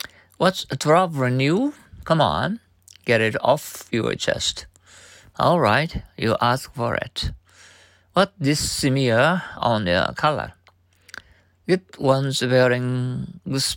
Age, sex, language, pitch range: 50-69, male, Japanese, 95-130 Hz